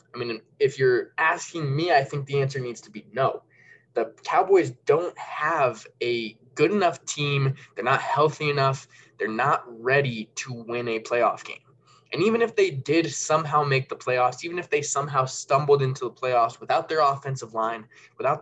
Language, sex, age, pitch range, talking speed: English, male, 20-39, 125-170 Hz, 180 wpm